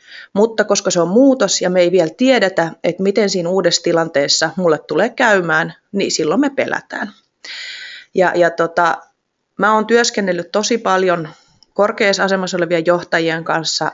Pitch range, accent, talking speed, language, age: 165-215 Hz, native, 145 wpm, Finnish, 30-49